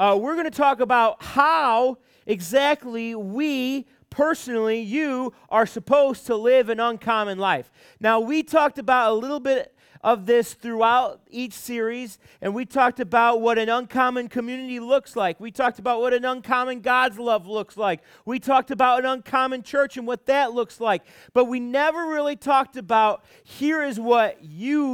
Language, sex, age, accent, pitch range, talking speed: English, male, 30-49, American, 205-255 Hz, 170 wpm